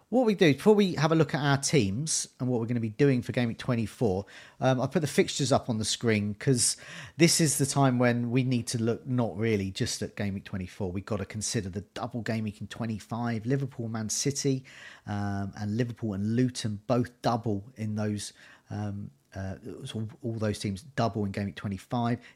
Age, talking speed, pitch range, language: 40-59, 210 wpm, 110-140 Hz, English